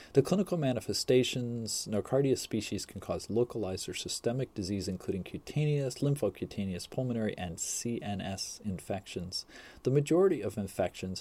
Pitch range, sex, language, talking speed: 95-125 Hz, male, English, 120 wpm